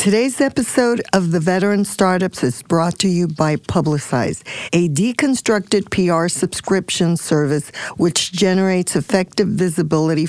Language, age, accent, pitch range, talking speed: English, 50-69, American, 155-205 Hz, 120 wpm